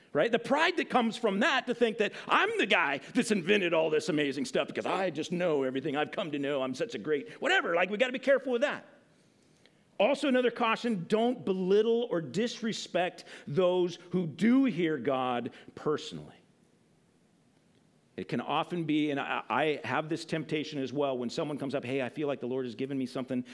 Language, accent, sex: English, American, male